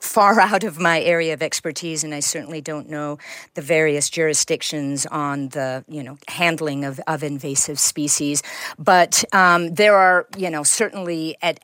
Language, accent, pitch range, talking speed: English, American, 145-170 Hz, 165 wpm